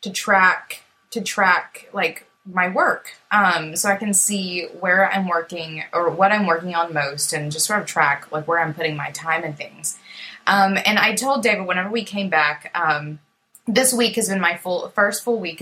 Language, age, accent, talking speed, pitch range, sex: English, 20-39, American, 205 wpm, 160-210 Hz, female